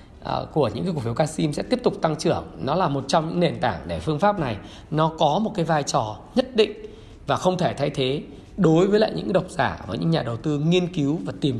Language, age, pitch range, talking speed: Vietnamese, 20-39, 130-180 Hz, 260 wpm